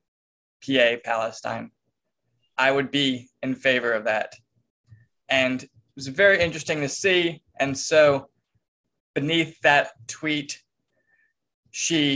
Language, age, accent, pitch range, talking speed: English, 20-39, American, 130-150 Hz, 110 wpm